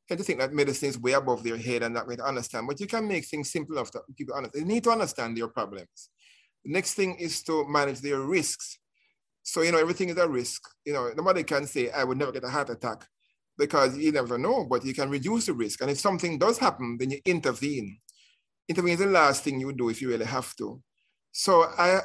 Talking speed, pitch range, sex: 250 wpm, 125-170 Hz, male